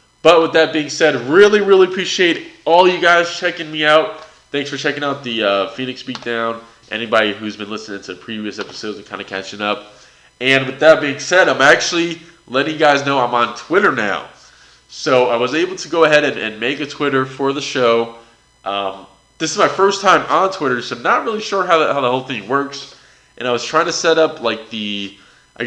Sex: male